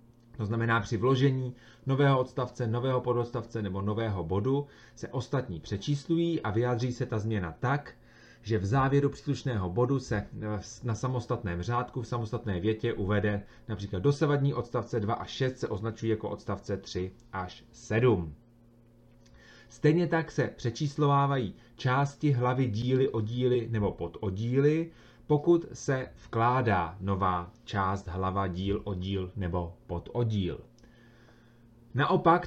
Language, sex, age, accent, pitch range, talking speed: Czech, male, 30-49, native, 100-125 Hz, 125 wpm